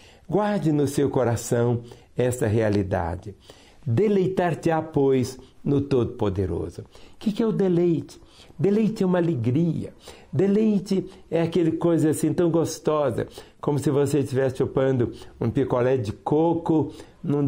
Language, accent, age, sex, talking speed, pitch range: Portuguese, Brazilian, 60-79, male, 125 wpm, 125-165 Hz